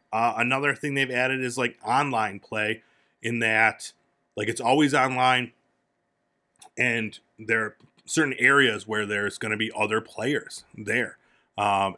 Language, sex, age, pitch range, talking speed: English, male, 30-49, 105-135 Hz, 145 wpm